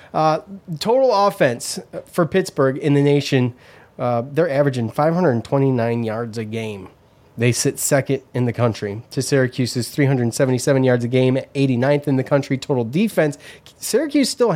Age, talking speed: 30-49, 145 wpm